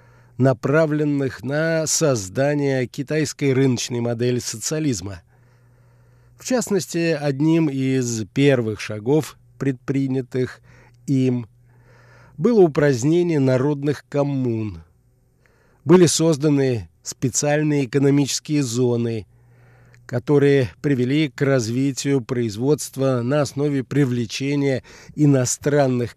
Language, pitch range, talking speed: Russian, 120-150 Hz, 75 wpm